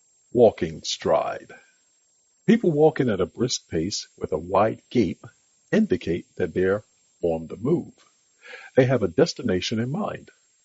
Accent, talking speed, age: American, 135 wpm, 50-69